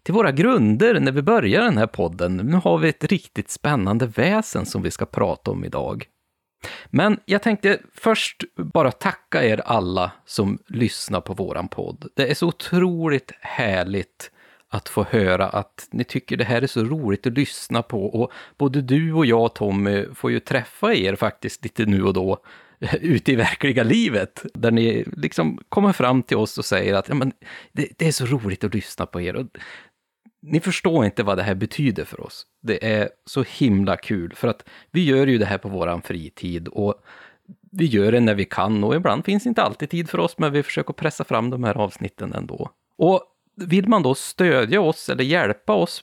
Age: 30-49